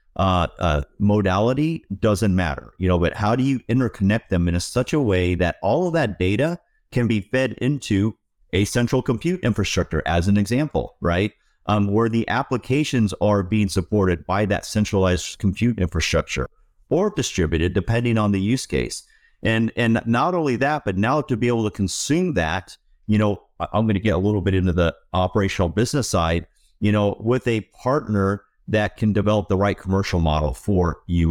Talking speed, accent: 180 wpm, American